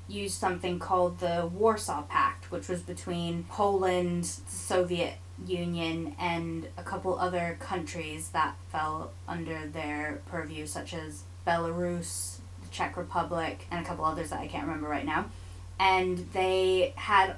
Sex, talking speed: female, 145 wpm